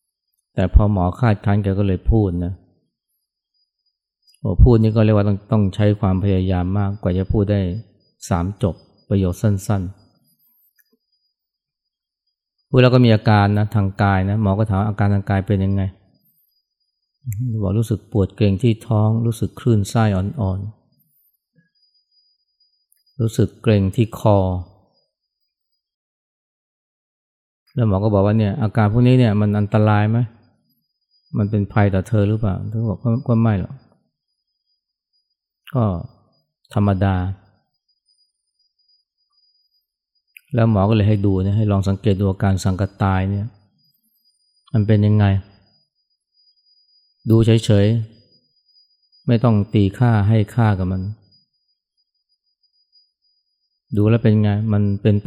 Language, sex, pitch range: Thai, male, 95-110 Hz